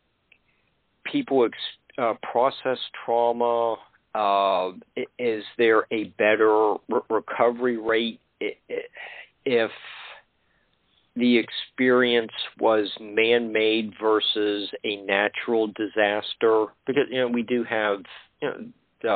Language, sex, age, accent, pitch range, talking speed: English, male, 50-69, American, 105-120 Hz, 90 wpm